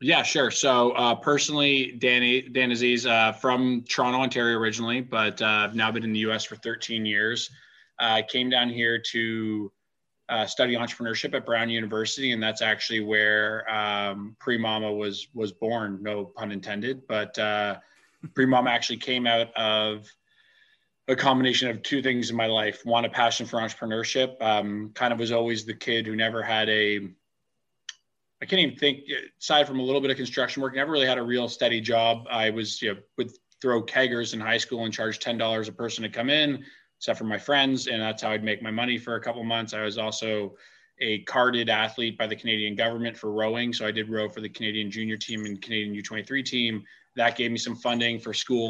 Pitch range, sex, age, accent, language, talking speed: 110-125 Hz, male, 20-39, American, English, 200 wpm